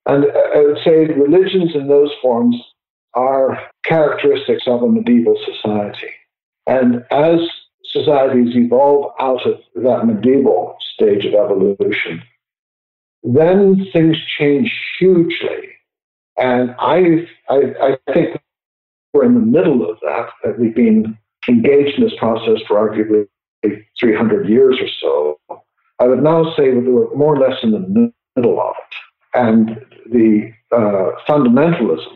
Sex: male